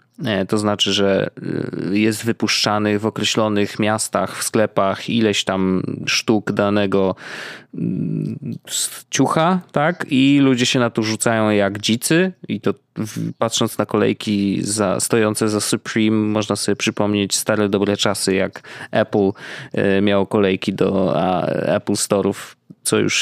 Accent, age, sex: native, 20-39, male